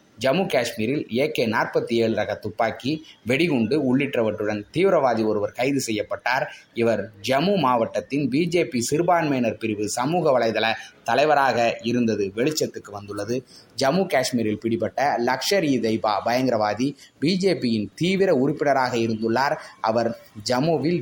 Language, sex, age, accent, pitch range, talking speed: Tamil, male, 20-39, native, 115-165 Hz, 105 wpm